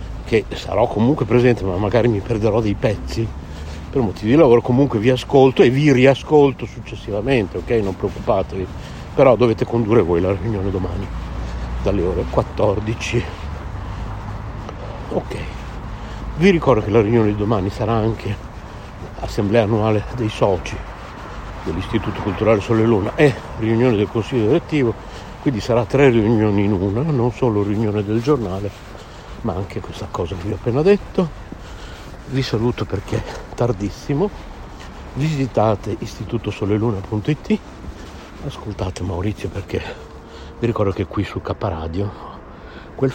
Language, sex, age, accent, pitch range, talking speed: Italian, male, 60-79, native, 100-120 Hz, 130 wpm